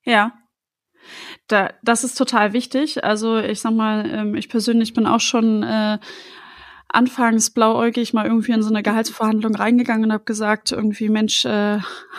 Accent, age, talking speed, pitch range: German, 20-39, 155 wpm, 210-245 Hz